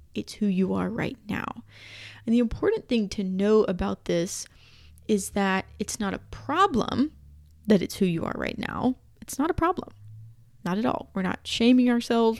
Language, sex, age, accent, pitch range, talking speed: English, female, 20-39, American, 180-235 Hz, 185 wpm